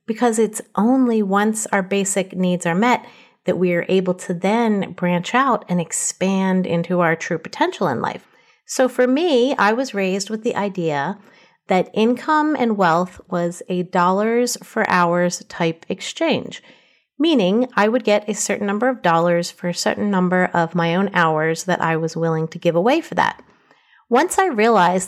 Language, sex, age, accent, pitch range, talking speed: English, female, 30-49, American, 180-225 Hz, 175 wpm